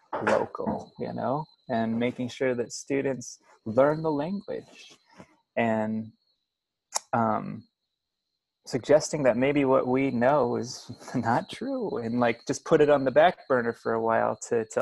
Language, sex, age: English, male, 20-39